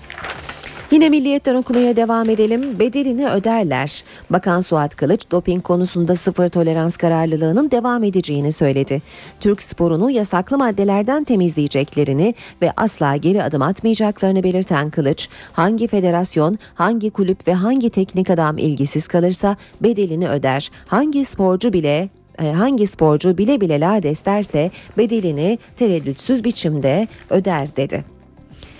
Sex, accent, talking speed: female, native, 115 wpm